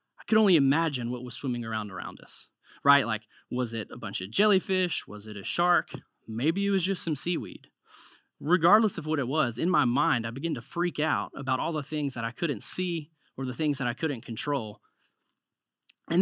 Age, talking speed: 20-39, 210 wpm